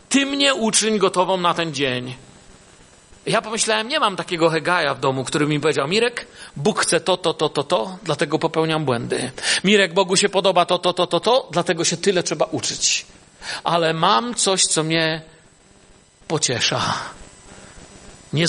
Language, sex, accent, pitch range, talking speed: Polish, male, native, 165-255 Hz, 160 wpm